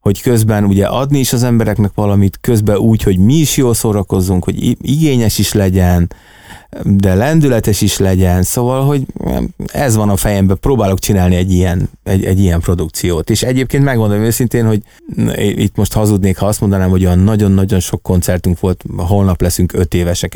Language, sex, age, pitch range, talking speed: Hungarian, male, 30-49, 90-110 Hz, 165 wpm